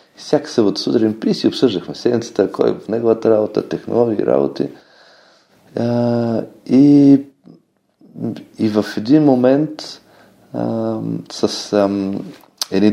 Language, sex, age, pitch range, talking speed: Bulgarian, male, 30-49, 95-140 Hz, 95 wpm